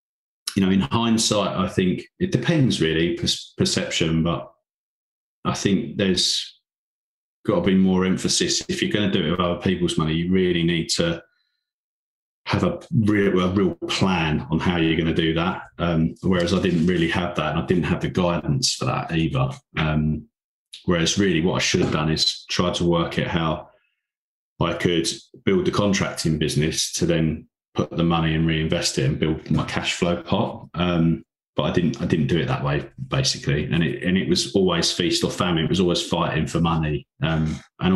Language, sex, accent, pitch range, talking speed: English, male, British, 80-105 Hz, 190 wpm